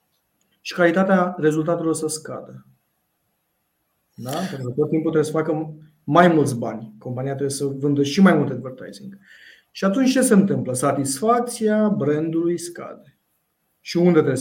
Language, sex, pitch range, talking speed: Romanian, male, 130-170 Hz, 150 wpm